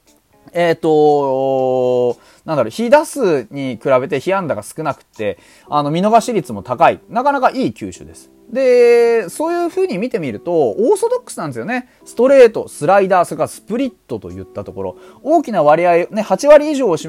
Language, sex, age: Japanese, male, 30-49